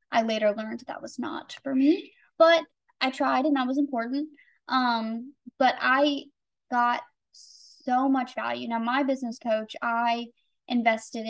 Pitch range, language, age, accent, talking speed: 245-300 Hz, English, 20-39, American, 150 wpm